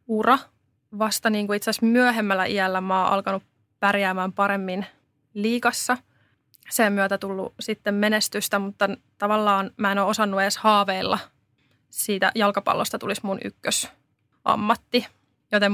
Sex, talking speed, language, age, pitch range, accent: female, 130 wpm, Finnish, 20-39, 195-220 Hz, native